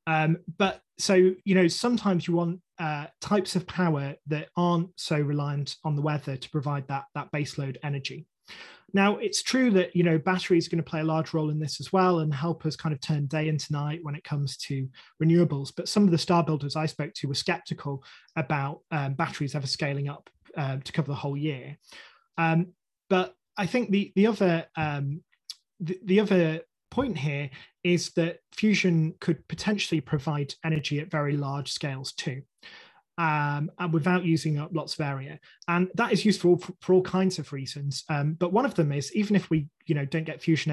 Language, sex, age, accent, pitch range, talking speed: English, male, 20-39, British, 145-175 Hz, 200 wpm